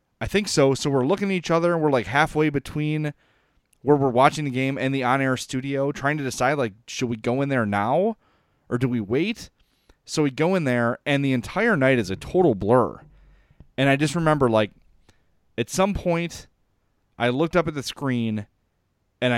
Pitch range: 110-135 Hz